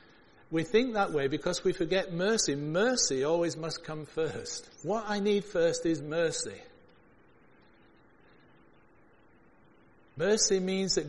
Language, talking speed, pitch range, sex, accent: English, 120 wpm, 140-185 Hz, male, British